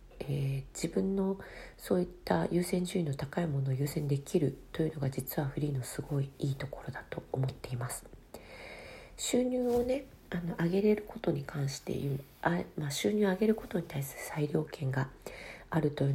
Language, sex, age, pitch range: Japanese, female, 40-59, 140-175 Hz